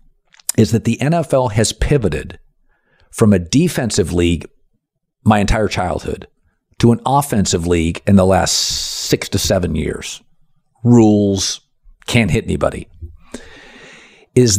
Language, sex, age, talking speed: English, male, 50-69, 120 wpm